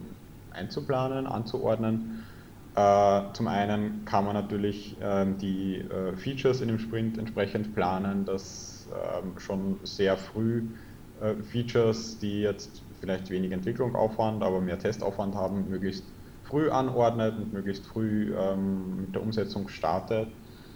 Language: German